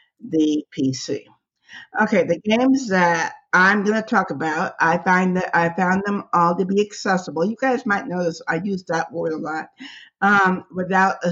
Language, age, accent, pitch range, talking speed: English, 60-79, American, 160-205 Hz, 180 wpm